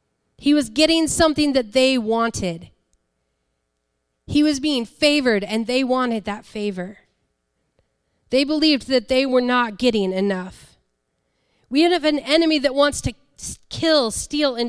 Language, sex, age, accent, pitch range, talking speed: English, female, 30-49, American, 210-290 Hz, 140 wpm